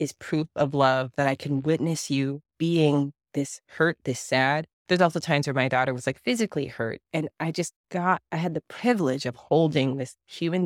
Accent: American